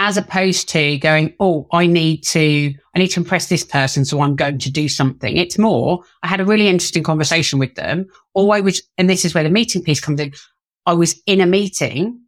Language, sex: English, female